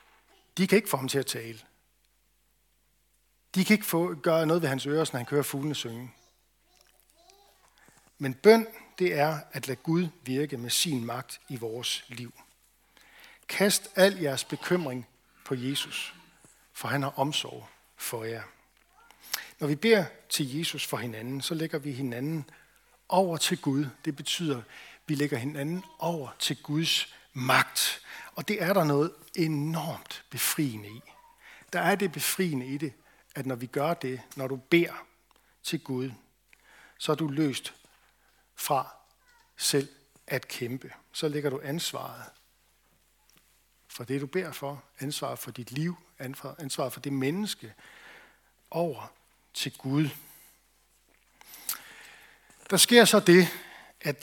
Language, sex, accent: Danish, male, native